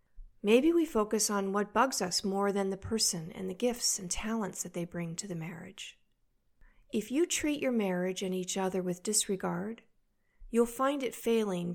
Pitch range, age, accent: 185-230 Hz, 40-59, American